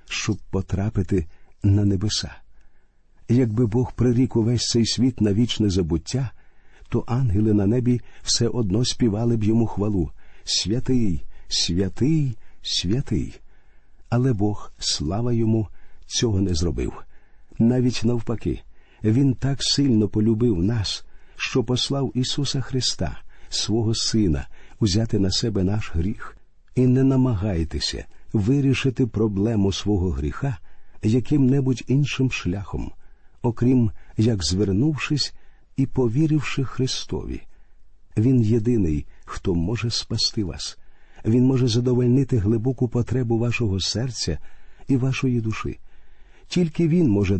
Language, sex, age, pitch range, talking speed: Ukrainian, male, 50-69, 100-125 Hz, 110 wpm